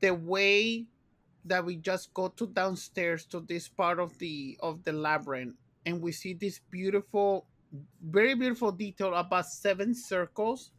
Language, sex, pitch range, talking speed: English, male, 150-190 Hz, 150 wpm